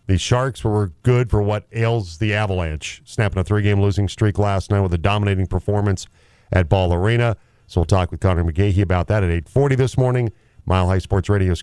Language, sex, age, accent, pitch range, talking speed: English, male, 40-59, American, 90-115 Hz, 200 wpm